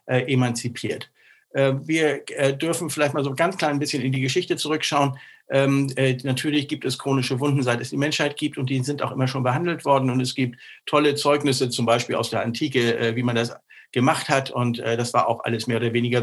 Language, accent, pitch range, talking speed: German, German, 125-150 Hz, 230 wpm